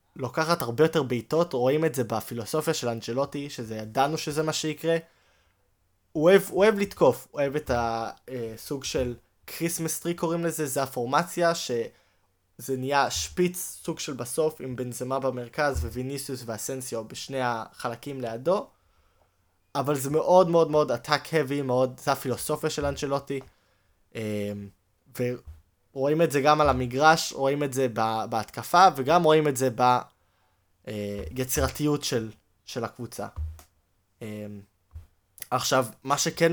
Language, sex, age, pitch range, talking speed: Hebrew, male, 20-39, 110-150 Hz, 130 wpm